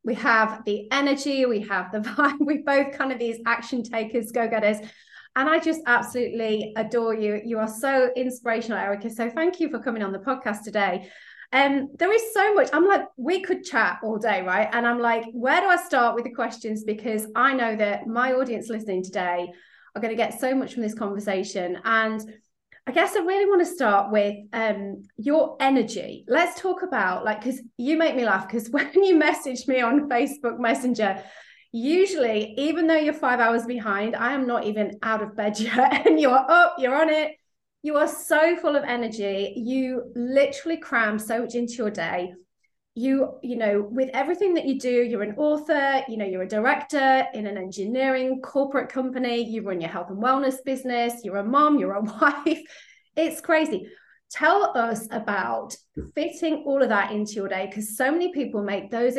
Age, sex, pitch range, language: 20-39, female, 215-275 Hz, English